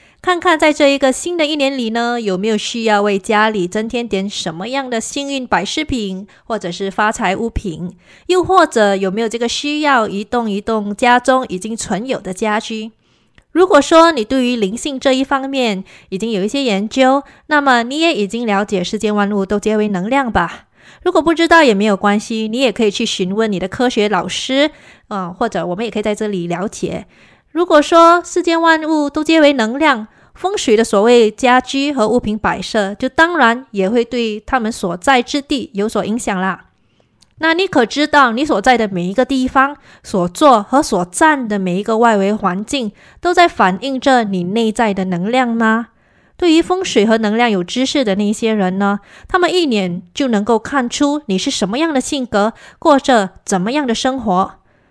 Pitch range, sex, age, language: 205-275 Hz, female, 20-39, English